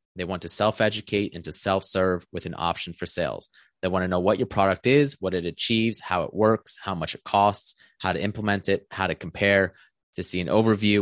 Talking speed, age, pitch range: 225 wpm, 20-39, 90-105 Hz